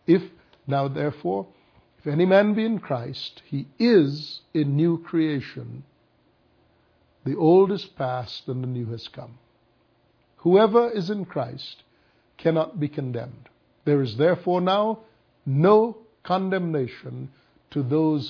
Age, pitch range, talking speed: 60-79, 130-180 Hz, 125 wpm